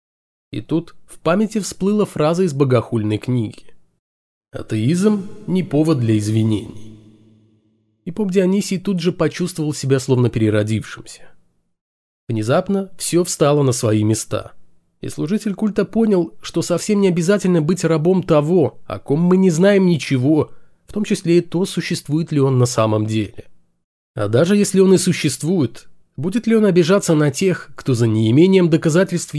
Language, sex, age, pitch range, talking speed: Russian, male, 20-39, 120-185 Hz, 150 wpm